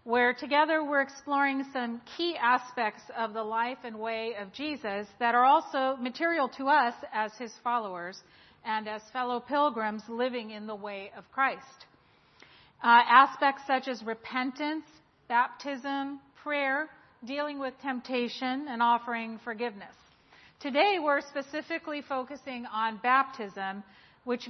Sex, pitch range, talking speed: female, 225-275 Hz, 130 wpm